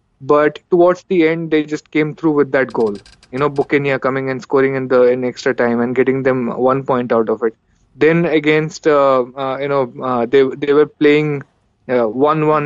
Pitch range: 125-150 Hz